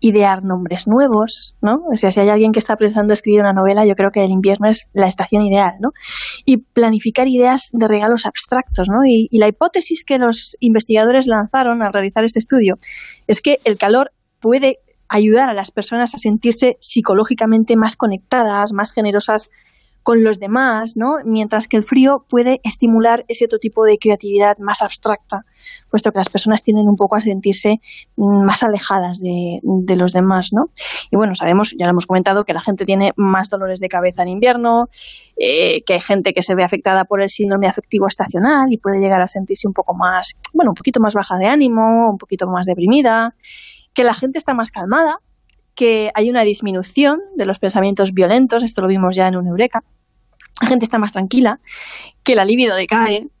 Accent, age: Spanish, 20-39